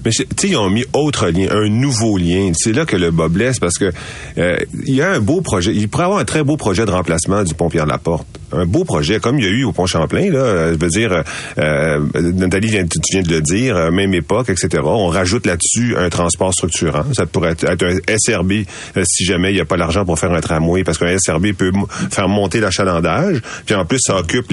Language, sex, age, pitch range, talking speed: French, male, 40-59, 85-110 Hz, 230 wpm